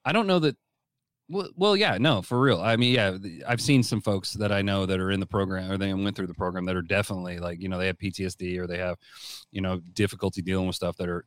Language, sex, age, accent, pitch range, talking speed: English, male, 30-49, American, 90-110 Hz, 270 wpm